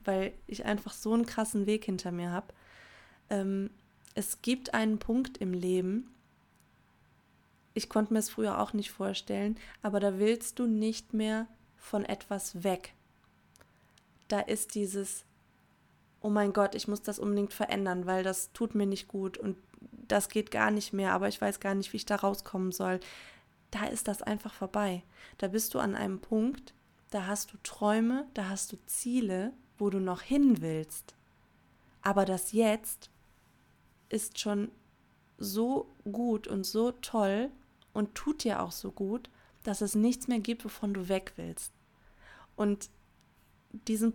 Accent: German